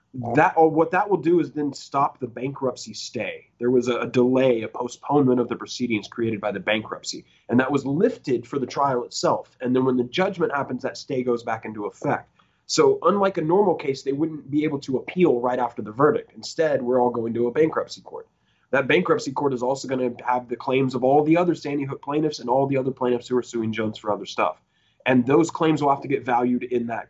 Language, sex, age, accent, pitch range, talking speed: English, male, 20-39, American, 120-150 Hz, 235 wpm